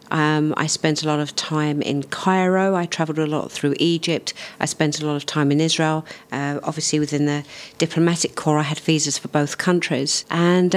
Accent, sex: British, female